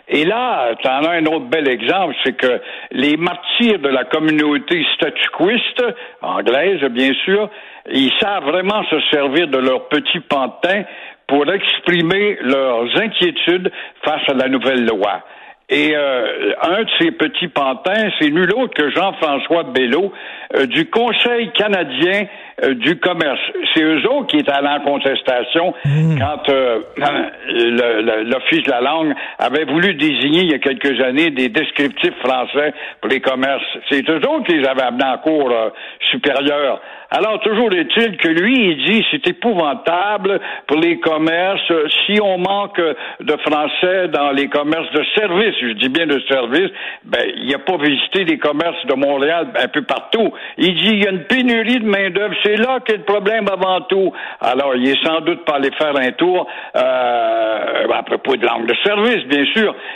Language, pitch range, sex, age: French, 140-210 Hz, male, 60-79